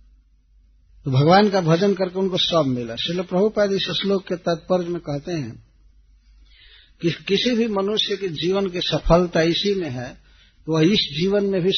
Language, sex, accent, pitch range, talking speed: Hindi, male, native, 120-185 Hz, 175 wpm